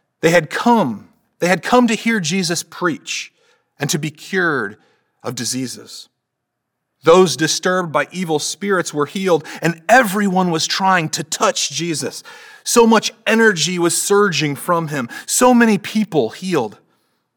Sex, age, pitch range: male, 30-49, 140-200 Hz